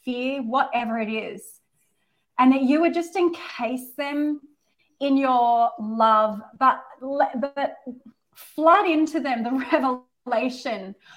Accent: Australian